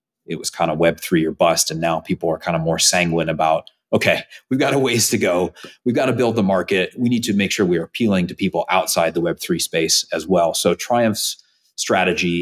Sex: male